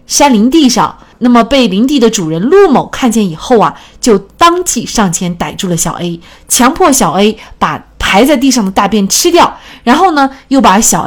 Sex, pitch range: female, 185-265 Hz